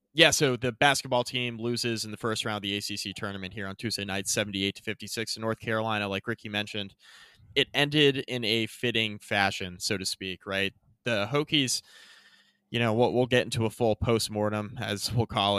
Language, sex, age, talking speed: English, male, 20-39, 210 wpm